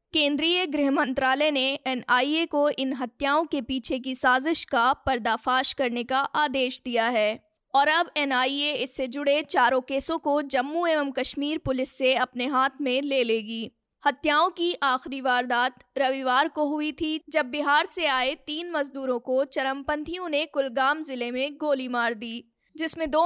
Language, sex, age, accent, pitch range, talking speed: Hindi, female, 20-39, native, 255-300 Hz, 160 wpm